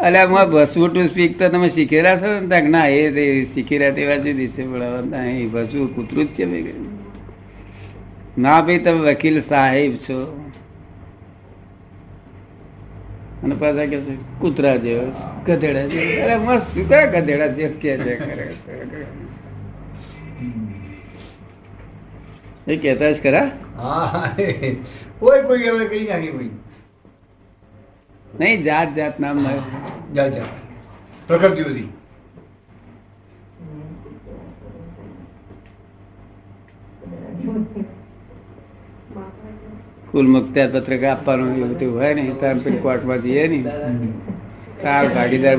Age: 60-79